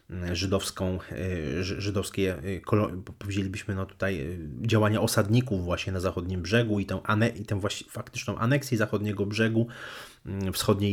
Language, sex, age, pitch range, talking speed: Polish, male, 30-49, 95-110 Hz, 105 wpm